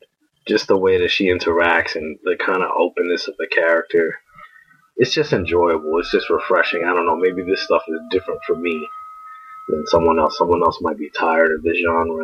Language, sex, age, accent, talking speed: English, male, 30-49, American, 200 wpm